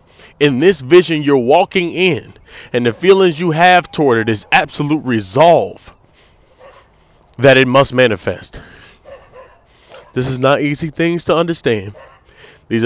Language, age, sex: English, 20-39, male